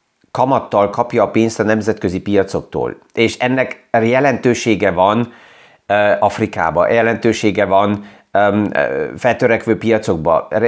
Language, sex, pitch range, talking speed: Hungarian, male, 100-125 Hz, 100 wpm